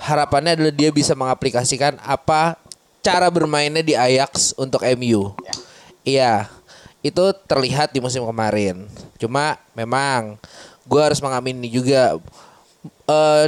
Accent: native